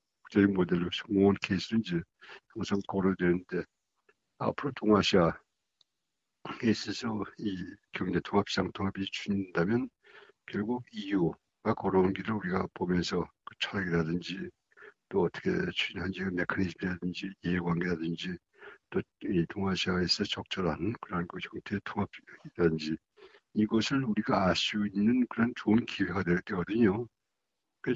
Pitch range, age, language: 90-105 Hz, 60-79, Korean